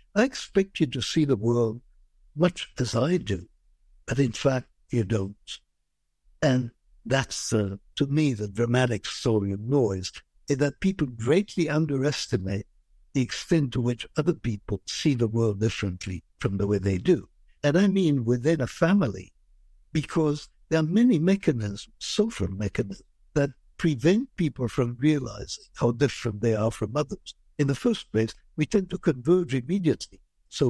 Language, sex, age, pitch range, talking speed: English, male, 60-79, 110-155 Hz, 155 wpm